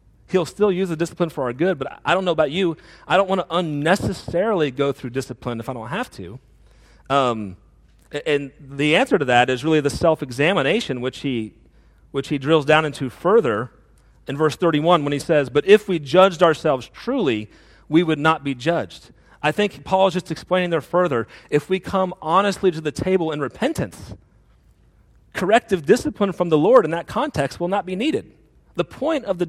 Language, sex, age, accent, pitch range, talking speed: English, male, 40-59, American, 135-190 Hz, 195 wpm